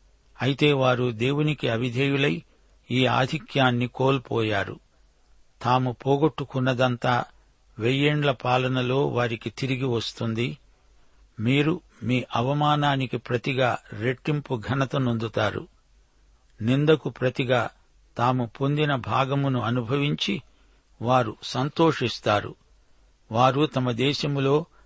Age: 60-79